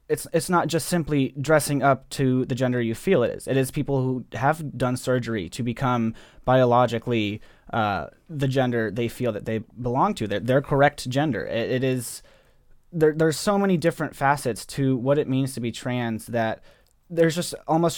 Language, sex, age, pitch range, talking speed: English, male, 20-39, 115-140 Hz, 190 wpm